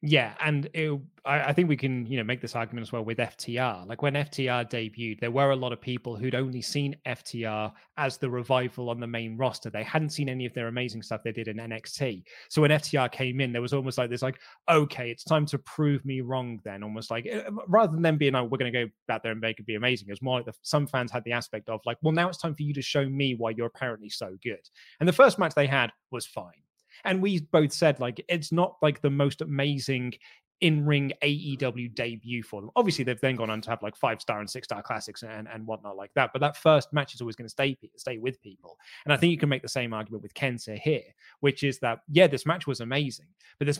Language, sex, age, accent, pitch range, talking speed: English, male, 20-39, British, 115-145 Hz, 260 wpm